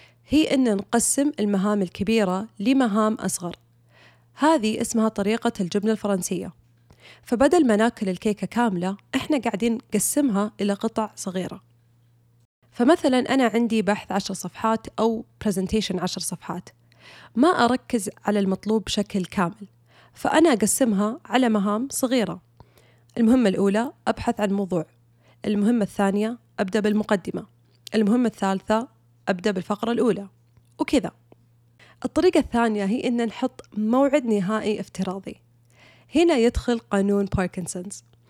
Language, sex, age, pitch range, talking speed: Arabic, female, 20-39, 185-240 Hz, 110 wpm